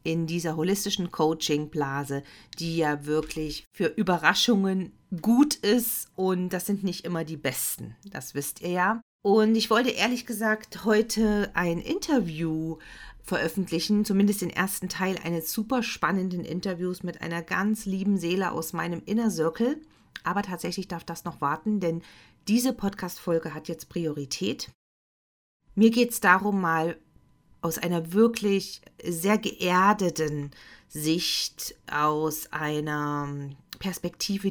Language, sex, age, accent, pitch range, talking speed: German, female, 40-59, German, 160-205 Hz, 130 wpm